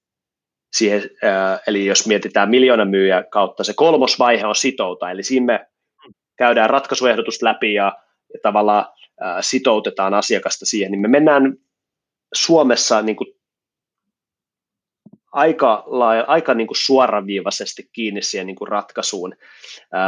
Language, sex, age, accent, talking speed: Finnish, male, 30-49, native, 125 wpm